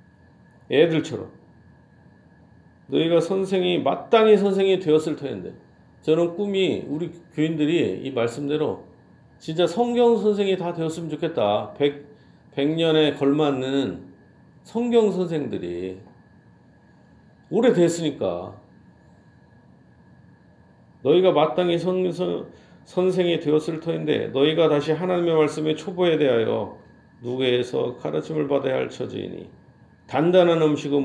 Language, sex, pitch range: Korean, male, 130-175 Hz